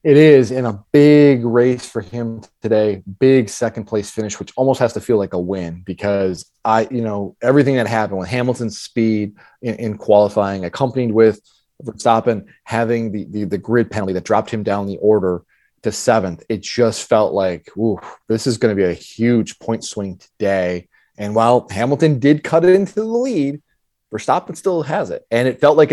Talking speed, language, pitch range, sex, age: 190 wpm, English, 100-120 Hz, male, 30-49